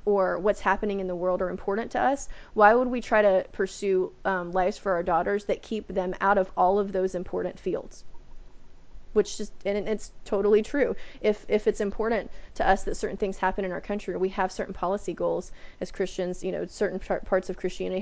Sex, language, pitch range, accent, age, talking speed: female, English, 185-210 Hz, American, 20-39, 210 wpm